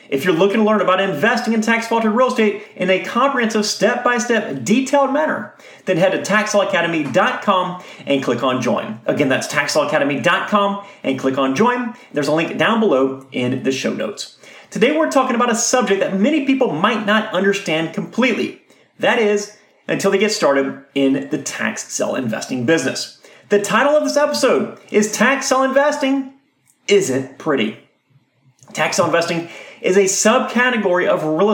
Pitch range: 180-245 Hz